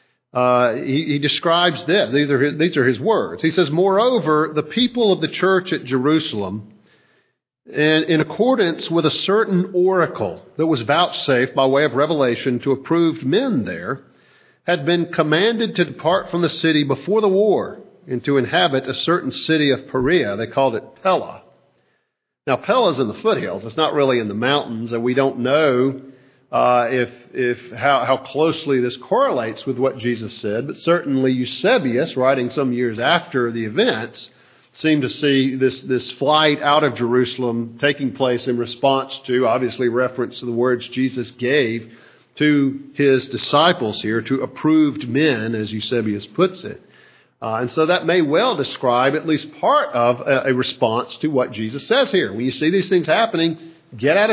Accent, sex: American, male